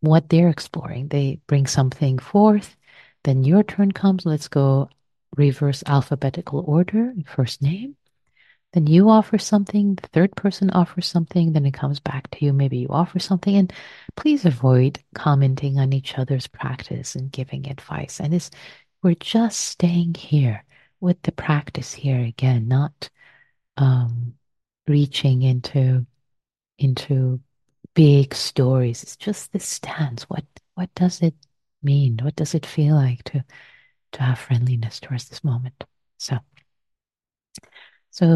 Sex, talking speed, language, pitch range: female, 140 wpm, English, 135-175 Hz